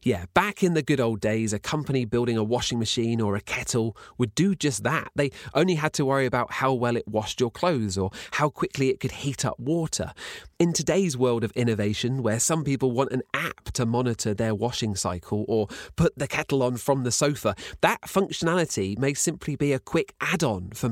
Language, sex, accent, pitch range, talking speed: English, male, British, 110-150 Hz, 210 wpm